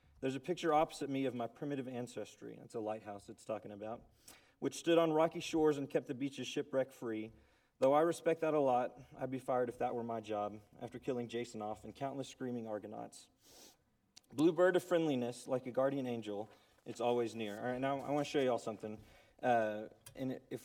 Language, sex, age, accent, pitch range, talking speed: English, male, 30-49, American, 110-140 Hz, 205 wpm